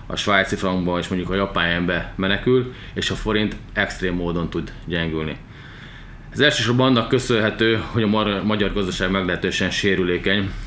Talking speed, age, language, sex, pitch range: 140 wpm, 20-39, Hungarian, male, 90-105 Hz